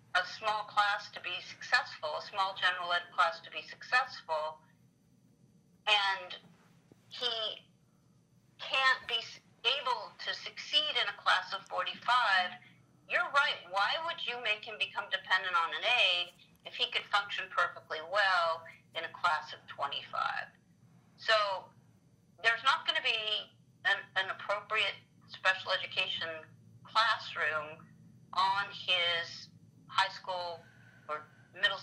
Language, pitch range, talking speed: English, 155-205 Hz, 125 wpm